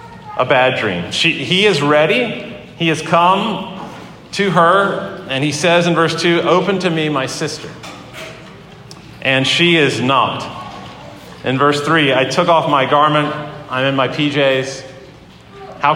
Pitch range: 135-170 Hz